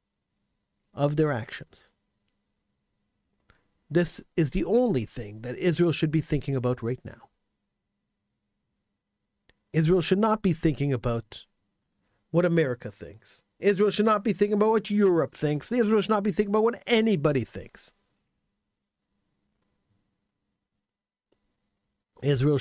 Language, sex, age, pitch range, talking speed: English, male, 50-69, 140-195 Hz, 115 wpm